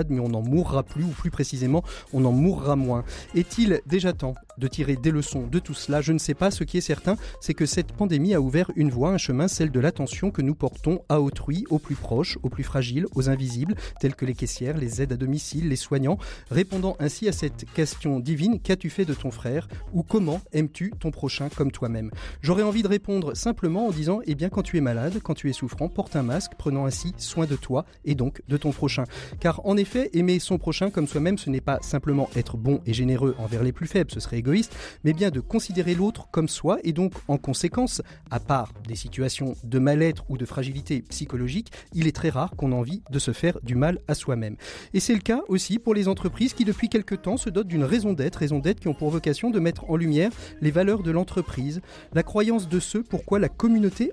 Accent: French